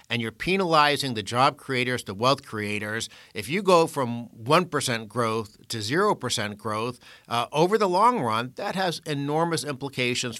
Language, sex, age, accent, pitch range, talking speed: English, male, 60-79, American, 110-135 Hz, 155 wpm